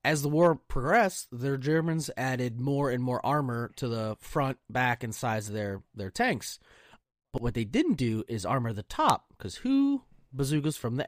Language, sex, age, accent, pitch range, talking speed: English, male, 30-49, American, 120-160 Hz, 190 wpm